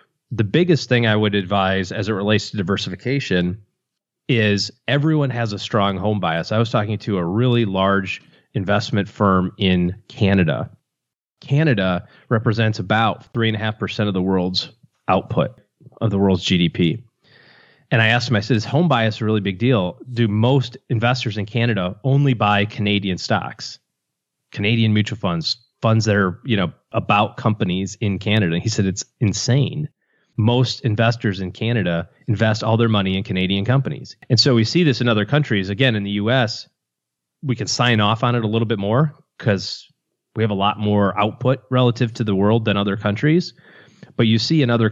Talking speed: 180 wpm